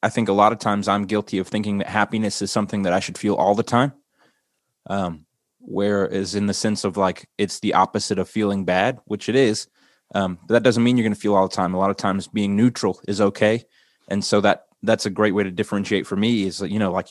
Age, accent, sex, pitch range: 20-39, American, male, 95-110 Hz